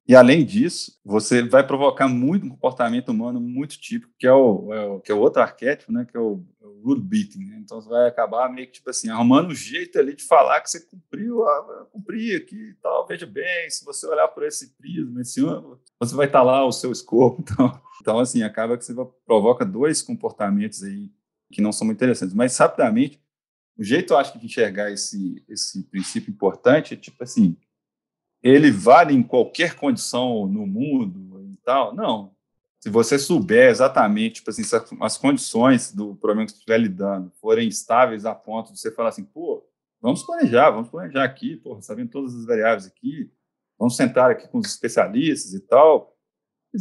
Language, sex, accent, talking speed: Portuguese, male, Brazilian, 195 wpm